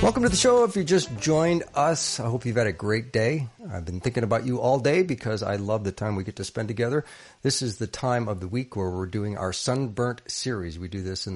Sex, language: male, English